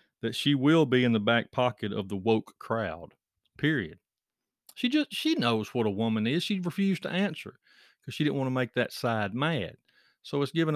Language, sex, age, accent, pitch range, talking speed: English, male, 40-59, American, 110-150 Hz, 205 wpm